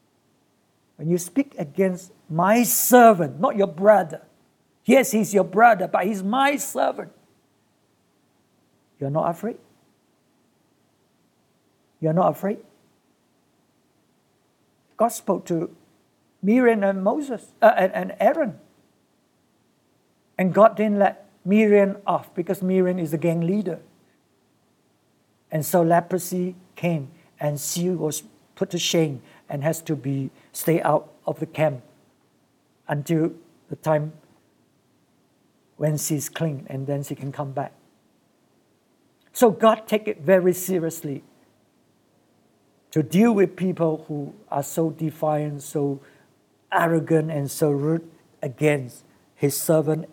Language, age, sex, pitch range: English, 60-79, male, 150-190 Hz